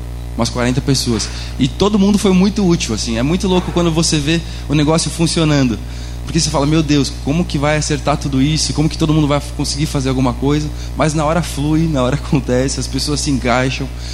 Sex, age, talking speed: male, 20-39, 210 wpm